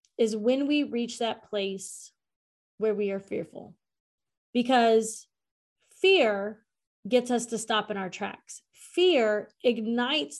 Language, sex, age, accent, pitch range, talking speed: English, female, 30-49, American, 220-275 Hz, 120 wpm